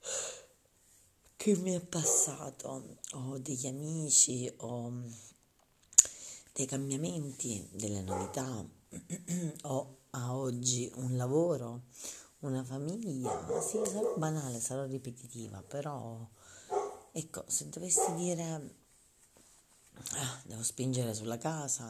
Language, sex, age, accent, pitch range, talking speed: Italian, female, 40-59, native, 115-140 Hz, 100 wpm